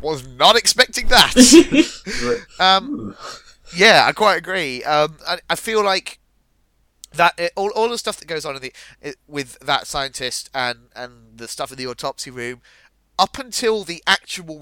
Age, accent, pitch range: 30-49, British, 120-155 Hz